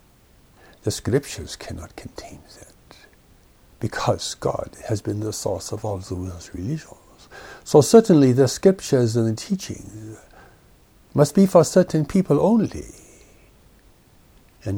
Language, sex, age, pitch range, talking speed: English, male, 60-79, 100-135 Hz, 120 wpm